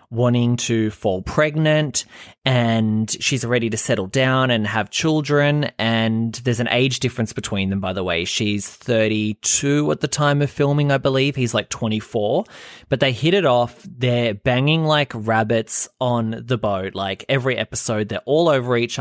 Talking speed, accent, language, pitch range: 170 wpm, Australian, English, 110-145 Hz